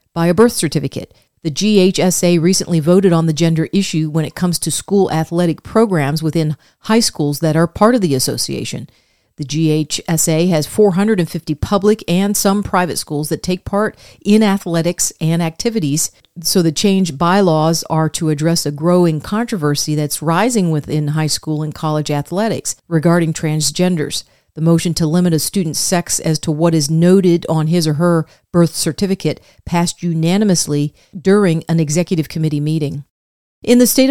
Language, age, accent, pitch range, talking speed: English, 50-69, American, 155-190 Hz, 160 wpm